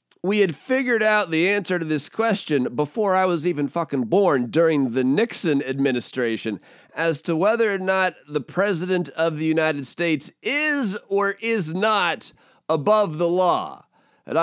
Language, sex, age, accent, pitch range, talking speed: English, male, 40-59, American, 165-225 Hz, 160 wpm